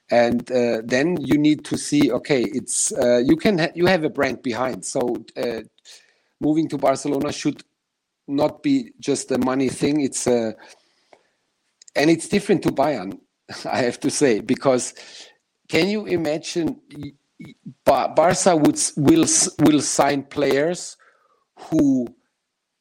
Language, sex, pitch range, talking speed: English, male, 135-180 Hz, 140 wpm